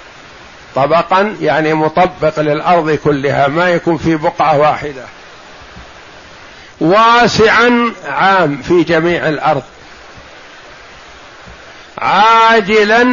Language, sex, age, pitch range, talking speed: Arabic, male, 50-69, 170-205 Hz, 75 wpm